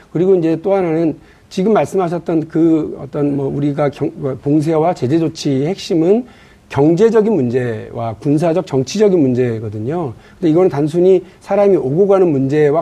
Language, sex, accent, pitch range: Korean, male, native, 140-195 Hz